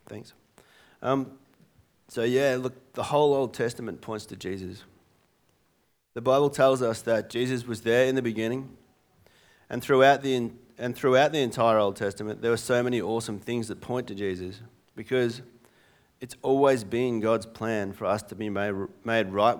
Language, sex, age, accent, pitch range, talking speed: English, male, 30-49, Australian, 105-125 Hz, 165 wpm